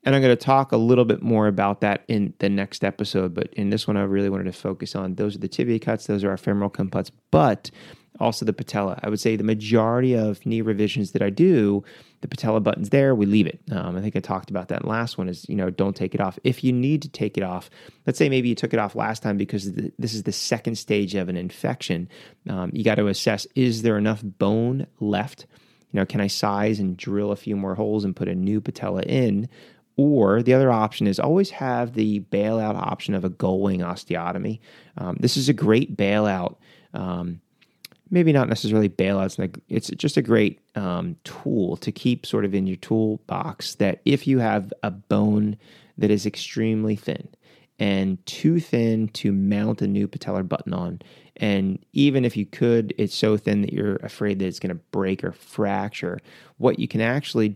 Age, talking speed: 30-49, 215 wpm